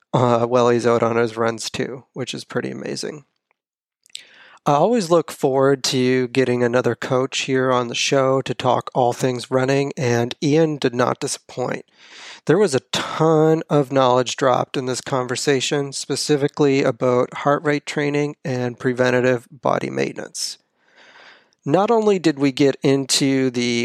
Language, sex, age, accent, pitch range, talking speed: English, male, 40-59, American, 125-145 Hz, 150 wpm